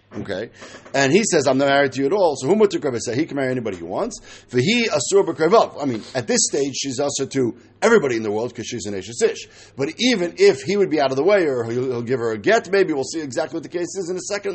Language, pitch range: English, 130-190 Hz